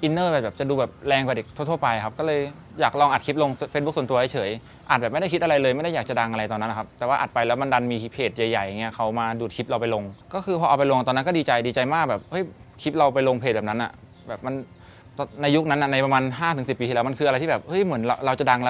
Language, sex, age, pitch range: English, male, 20-39, 115-150 Hz